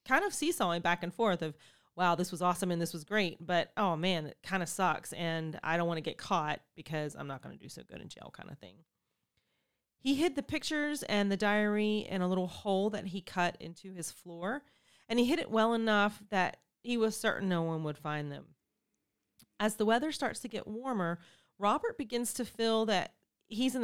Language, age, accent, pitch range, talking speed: English, 30-49, American, 165-210 Hz, 220 wpm